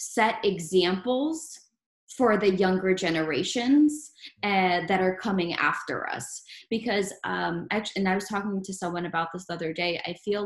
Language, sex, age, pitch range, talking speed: English, female, 20-39, 175-215 Hz, 160 wpm